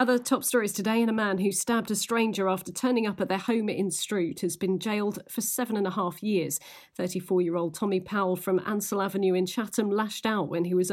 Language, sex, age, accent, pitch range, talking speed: English, female, 40-59, British, 180-230 Hz, 225 wpm